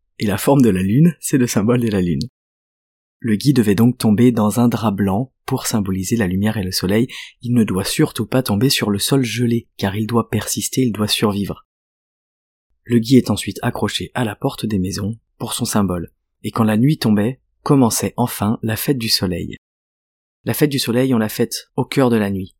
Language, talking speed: French, 215 wpm